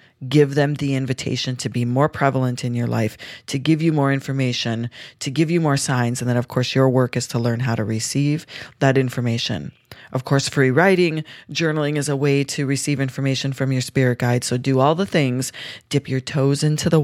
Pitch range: 125-145 Hz